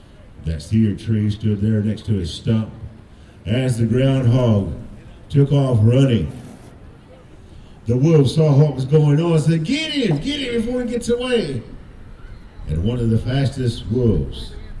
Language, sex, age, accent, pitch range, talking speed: English, male, 50-69, American, 95-135 Hz, 155 wpm